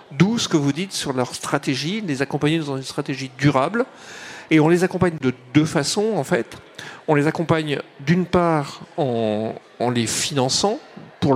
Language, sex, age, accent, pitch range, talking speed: French, male, 40-59, French, 140-175 Hz, 175 wpm